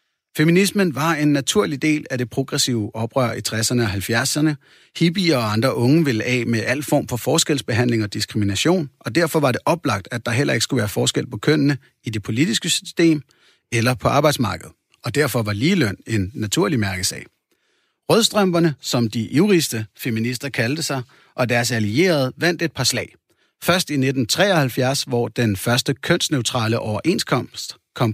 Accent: native